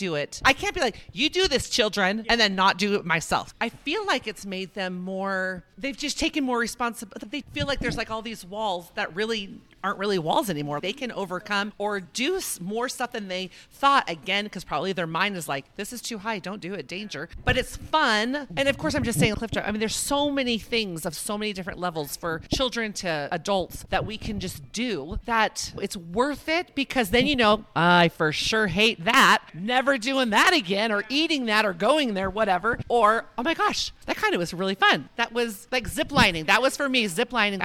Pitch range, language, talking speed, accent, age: 190-255 Hz, English, 225 wpm, American, 40-59